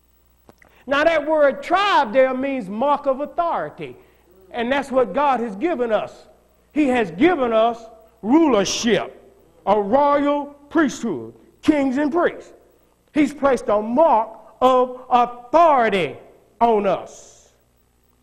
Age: 50-69